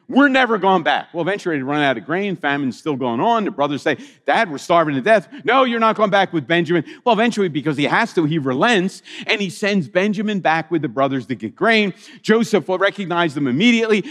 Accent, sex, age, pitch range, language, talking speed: American, male, 50-69, 150-225 Hz, English, 230 wpm